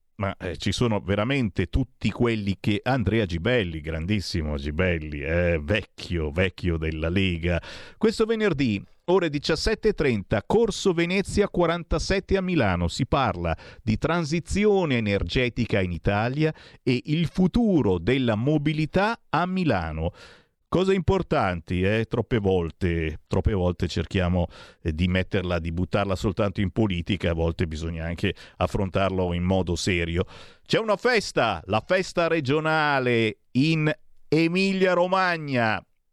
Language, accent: Italian, native